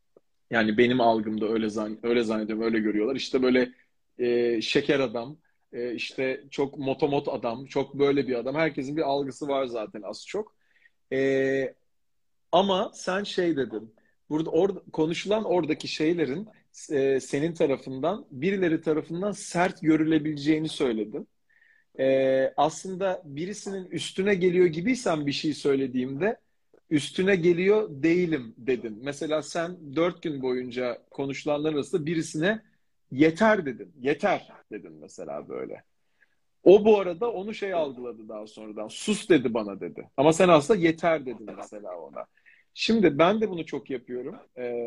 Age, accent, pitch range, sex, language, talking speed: 40-59, native, 130-185 Hz, male, Turkish, 135 wpm